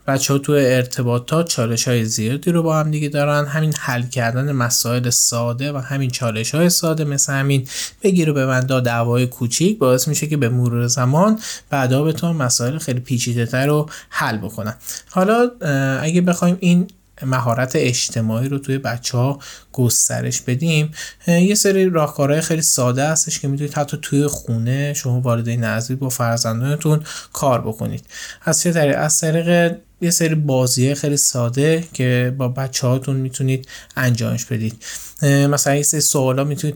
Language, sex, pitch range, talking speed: Persian, male, 125-155 Hz, 150 wpm